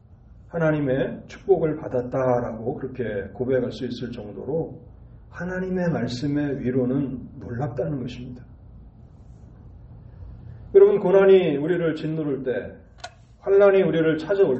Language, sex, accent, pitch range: Korean, male, native, 115-145 Hz